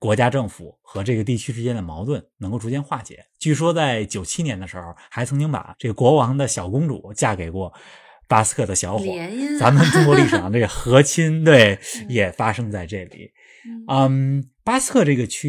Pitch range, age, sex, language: 100-155 Hz, 20-39, male, Chinese